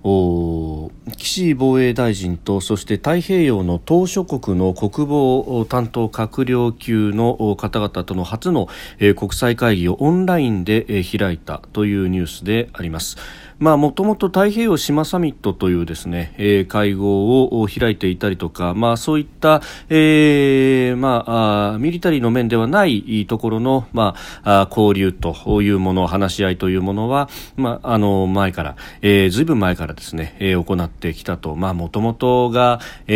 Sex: male